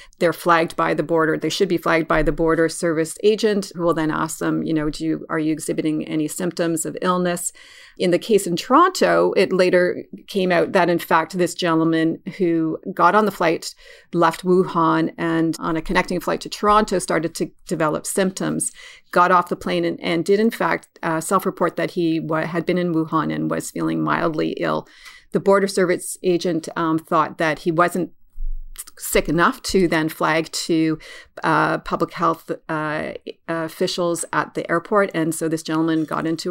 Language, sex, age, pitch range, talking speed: English, female, 40-59, 160-180 Hz, 185 wpm